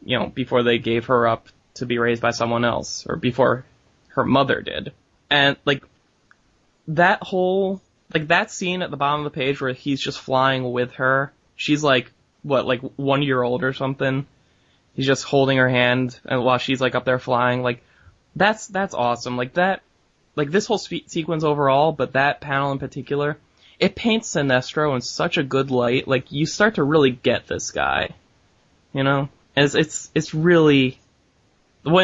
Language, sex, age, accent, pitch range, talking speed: English, male, 10-29, American, 125-150 Hz, 185 wpm